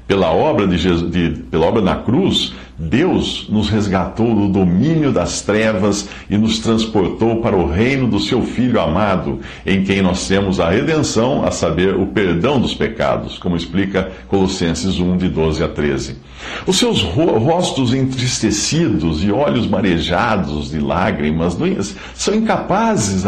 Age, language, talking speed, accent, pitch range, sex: 60-79, Portuguese, 135 wpm, Brazilian, 85-115 Hz, male